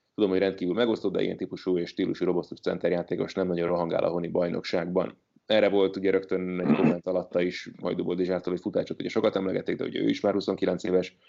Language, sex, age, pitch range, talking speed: Hungarian, male, 30-49, 90-105 Hz, 215 wpm